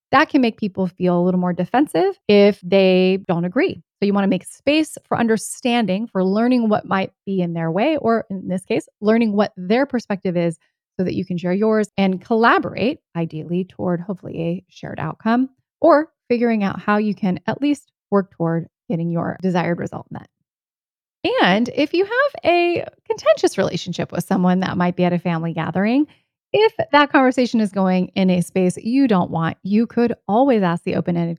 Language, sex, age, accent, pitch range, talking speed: English, female, 30-49, American, 180-235 Hz, 190 wpm